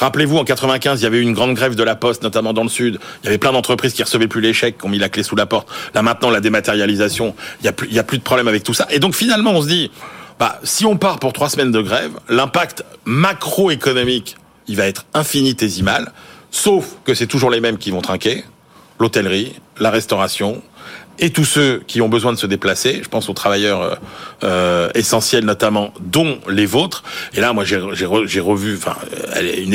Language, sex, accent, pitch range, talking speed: French, male, French, 105-130 Hz, 215 wpm